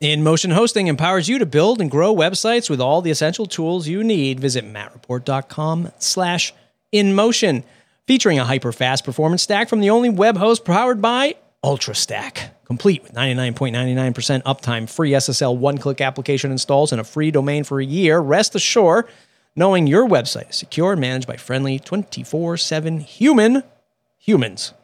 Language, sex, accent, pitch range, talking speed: English, male, American, 130-190 Hz, 150 wpm